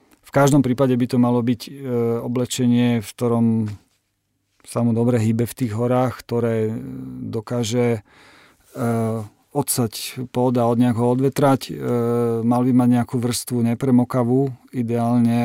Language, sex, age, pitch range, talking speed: Slovak, male, 40-59, 115-125 Hz, 130 wpm